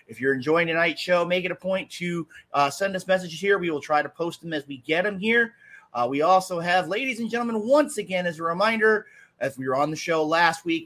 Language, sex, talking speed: English, male, 255 wpm